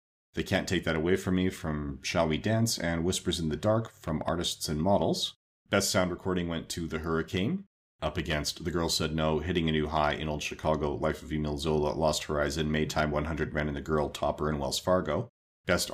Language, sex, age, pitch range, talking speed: English, male, 40-59, 75-90 Hz, 215 wpm